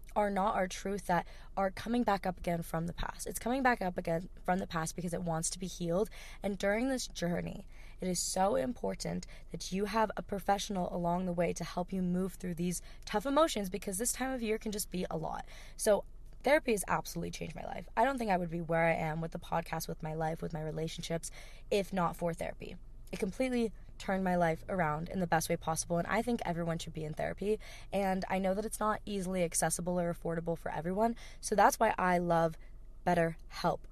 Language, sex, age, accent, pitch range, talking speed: English, female, 20-39, American, 165-200 Hz, 225 wpm